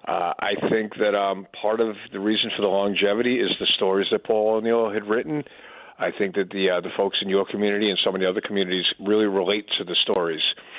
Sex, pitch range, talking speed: male, 95-115 Hz, 225 wpm